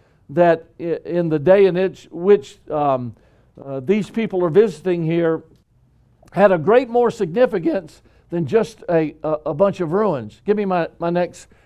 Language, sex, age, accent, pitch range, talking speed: English, male, 60-79, American, 160-215 Hz, 155 wpm